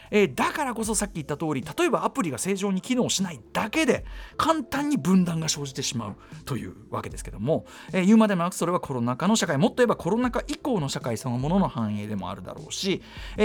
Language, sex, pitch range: Japanese, male, 135-230 Hz